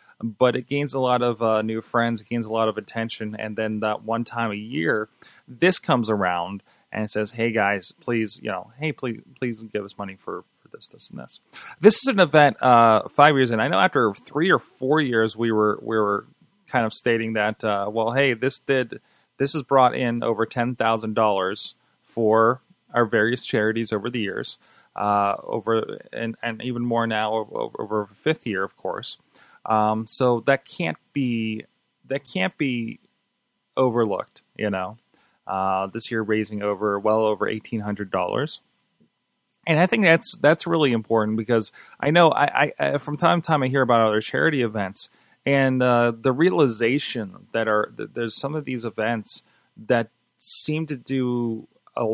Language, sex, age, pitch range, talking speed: English, male, 20-39, 110-135 Hz, 185 wpm